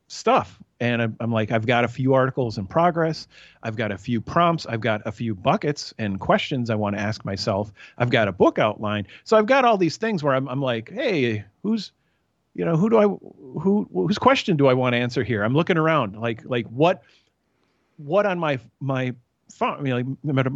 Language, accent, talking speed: English, American, 215 wpm